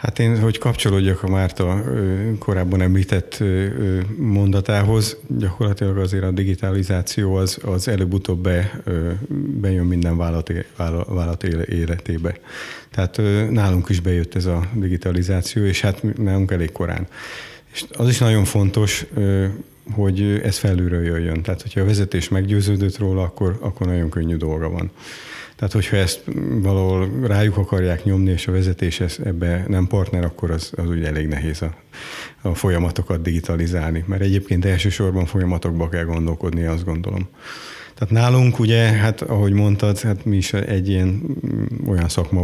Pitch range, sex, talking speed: 90-105 Hz, male, 140 wpm